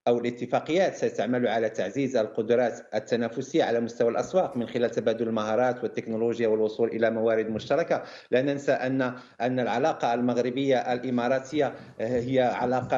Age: 50-69